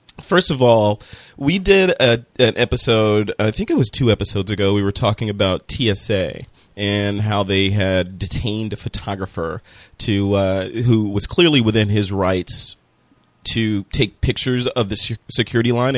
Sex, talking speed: male, 160 wpm